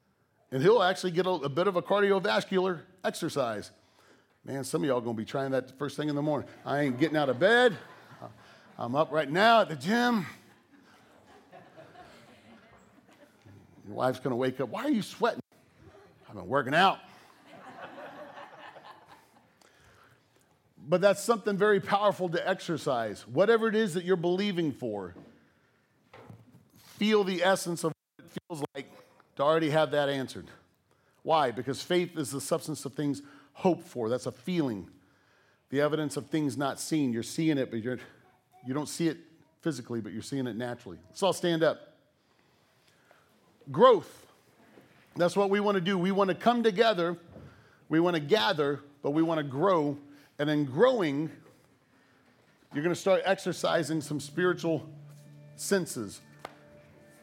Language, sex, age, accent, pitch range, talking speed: English, male, 40-59, American, 135-185 Hz, 155 wpm